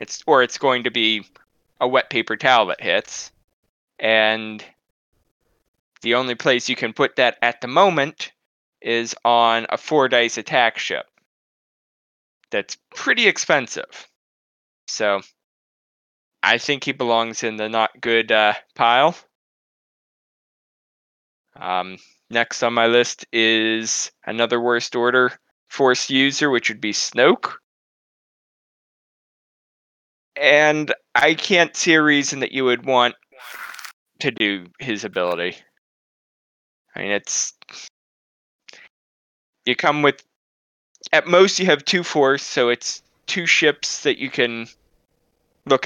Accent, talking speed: American, 120 wpm